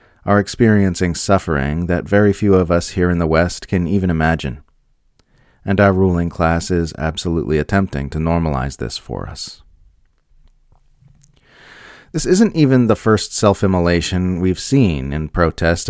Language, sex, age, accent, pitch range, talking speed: English, male, 30-49, American, 80-100 Hz, 140 wpm